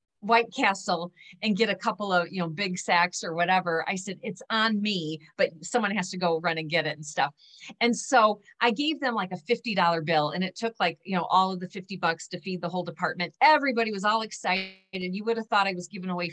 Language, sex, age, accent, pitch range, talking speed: English, female, 40-59, American, 185-260 Hz, 245 wpm